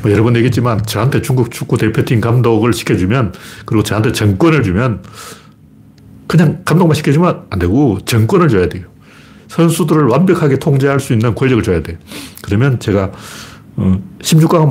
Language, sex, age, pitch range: Korean, male, 40-59, 110-150 Hz